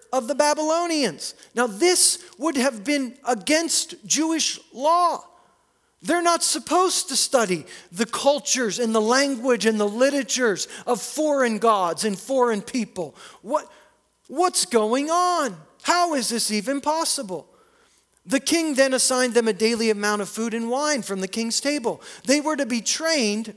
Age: 40-59